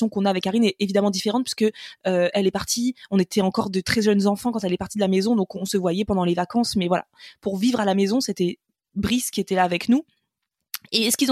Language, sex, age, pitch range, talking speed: French, female, 20-39, 195-245 Hz, 260 wpm